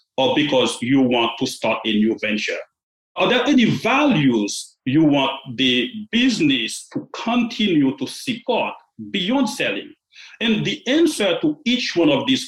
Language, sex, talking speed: English, male, 150 wpm